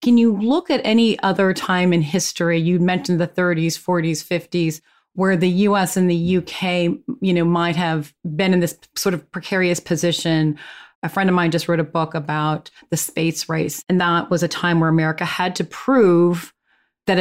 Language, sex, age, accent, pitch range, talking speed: English, female, 30-49, American, 160-195 Hz, 190 wpm